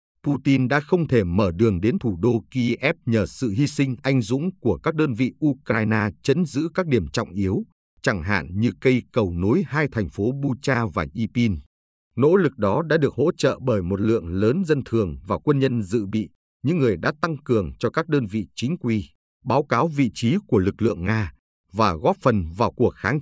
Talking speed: 210 wpm